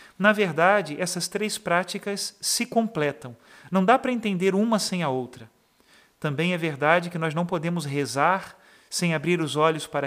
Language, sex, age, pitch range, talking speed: Portuguese, male, 40-59, 150-190 Hz, 165 wpm